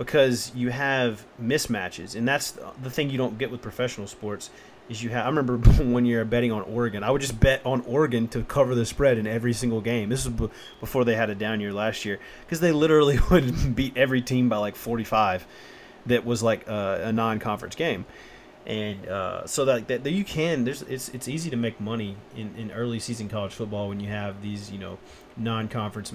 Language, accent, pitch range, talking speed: English, American, 105-135 Hz, 210 wpm